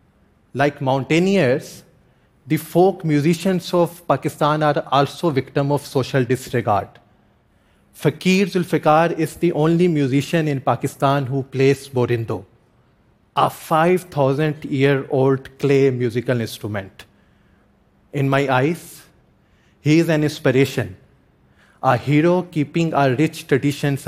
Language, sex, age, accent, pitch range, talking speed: Spanish, male, 30-49, Indian, 130-160 Hz, 105 wpm